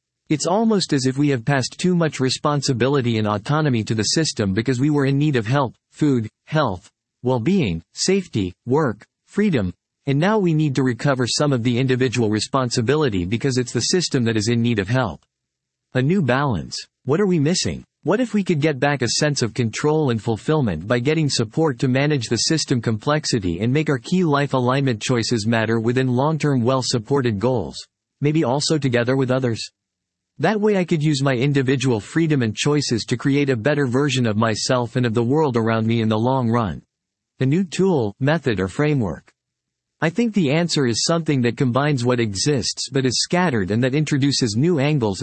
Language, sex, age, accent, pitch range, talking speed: English, male, 40-59, American, 115-155 Hz, 190 wpm